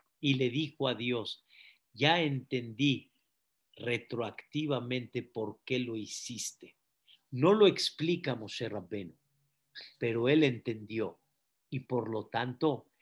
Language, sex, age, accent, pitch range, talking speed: Spanish, male, 50-69, Mexican, 120-175 Hz, 110 wpm